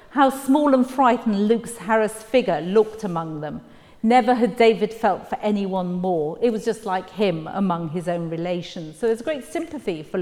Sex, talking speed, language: female, 180 wpm, English